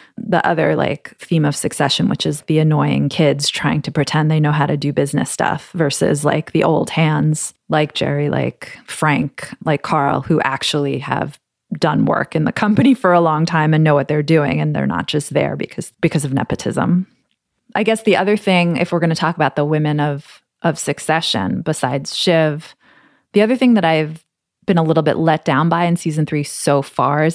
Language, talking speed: English, 205 wpm